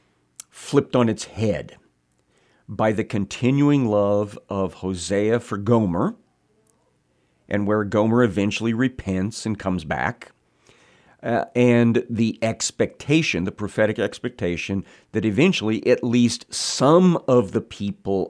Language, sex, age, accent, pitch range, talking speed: English, male, 50-69, American, 95-120 Hz, 115 wpm